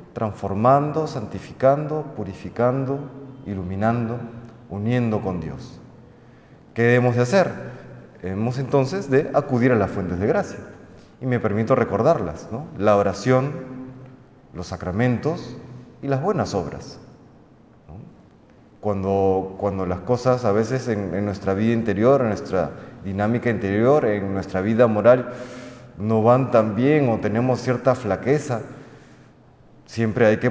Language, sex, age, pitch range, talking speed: Spanish, male, 30-49, 105-135 Hz, 120 wpm